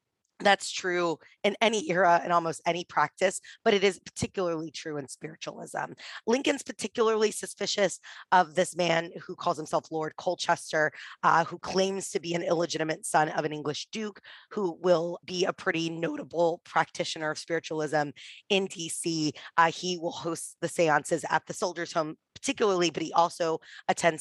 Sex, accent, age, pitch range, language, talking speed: female, American, 20-39, 160-195 Hz, English, 160 wpm